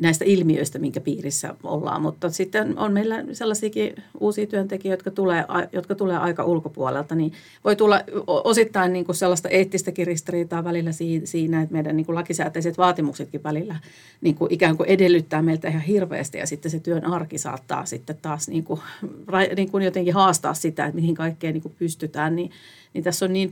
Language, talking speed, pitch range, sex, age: Finnish, 170 wpm, 155-180 Hz, female, 40-59